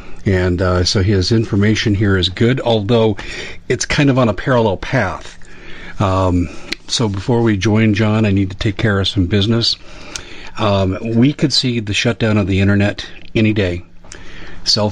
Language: English